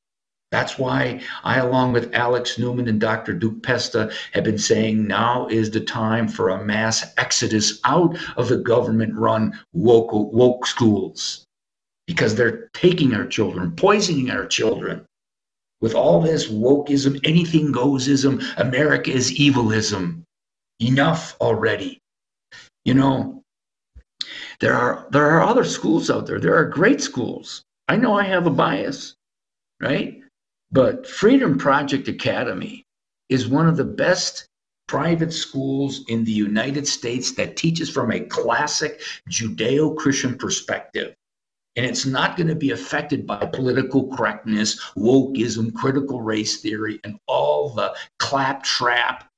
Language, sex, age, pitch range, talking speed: English, male, 50-69, 110-140 Hz, 130 wpm